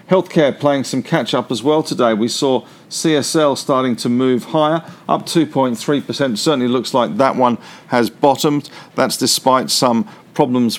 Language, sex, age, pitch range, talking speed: English, male, 50-69, 125-160 Hz, 150 wpm